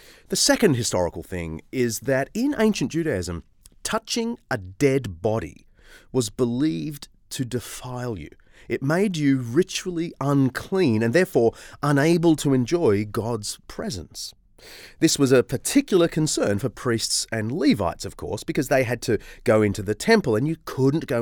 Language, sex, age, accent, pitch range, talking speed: English, male, 30-49, Australian, 100-160 Hz, 150 wpm